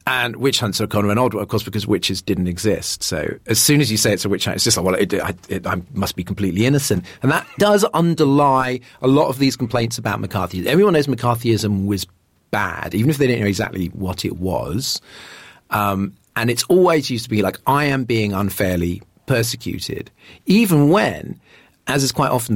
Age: 40-59